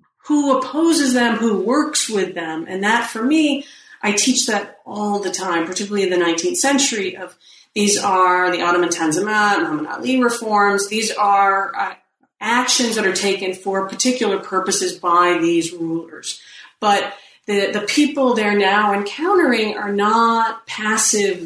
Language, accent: English, American